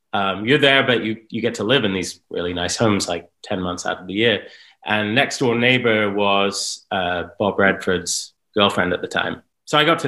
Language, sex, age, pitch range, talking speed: English, male, 30-49, 95-115 Hz, 220 wpm